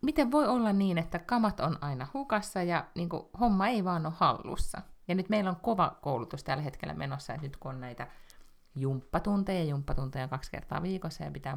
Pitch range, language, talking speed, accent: 135-185 Hz, Finnish, 195 wpm, native